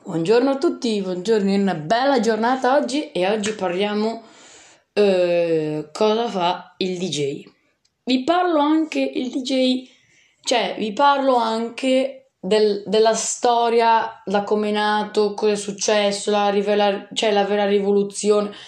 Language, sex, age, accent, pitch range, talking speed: Italian, female, 20-39, native, 185-245 Hz, 135 wpm